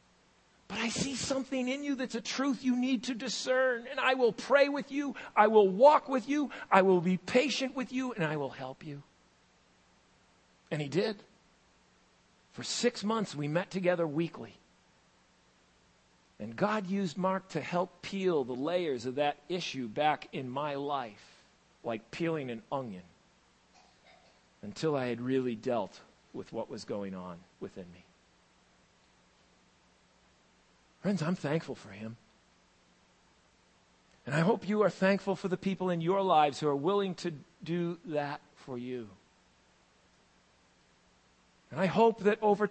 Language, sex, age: English, male, 50-69